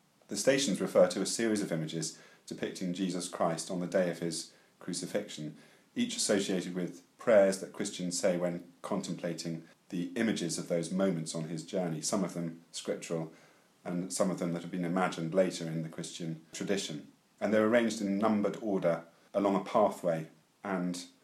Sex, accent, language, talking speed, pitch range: male, British, English, 170 wpm, 85-95 Hz